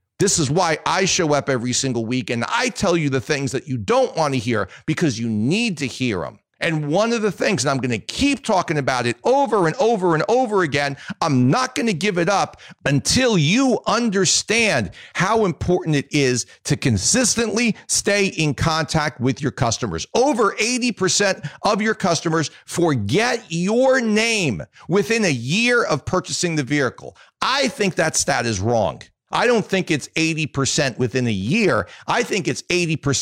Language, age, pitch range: English, 40-59, 135-200 Hz